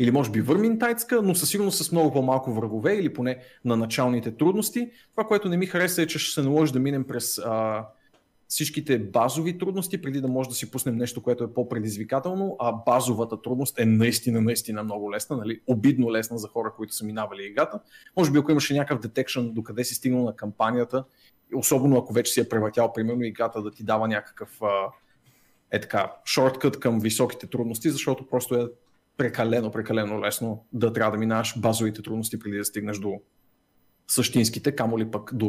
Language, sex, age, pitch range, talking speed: Bulgarian, male, 30-49, 110-145 Hz, 185 wpm